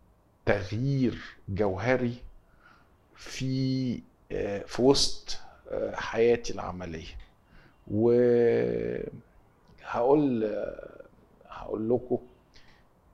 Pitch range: 100-125 Hz